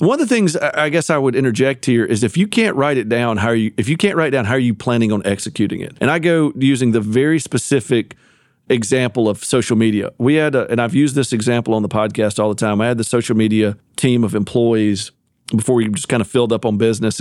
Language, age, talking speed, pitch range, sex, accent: English, 40-59, 255 wpm, 110-140 Hz, male, American